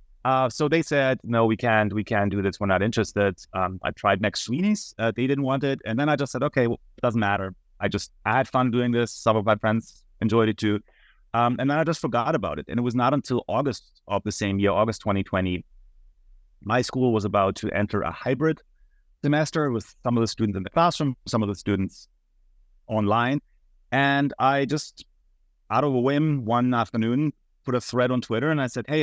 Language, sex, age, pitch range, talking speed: English, male, 30-49, 100-130 Hz, 225 wpm